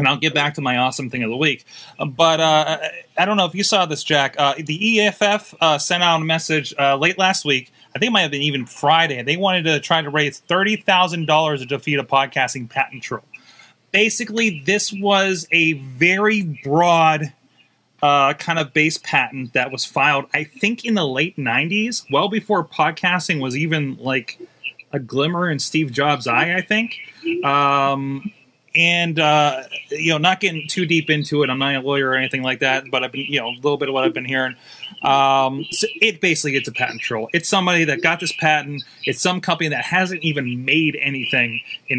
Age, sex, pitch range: 30-49, male, 135-175 Hz